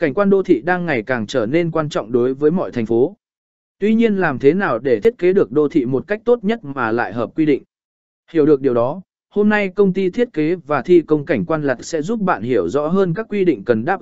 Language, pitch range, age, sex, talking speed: Vietnamese, 150-205 Hz, 20-39, male, 270 wpm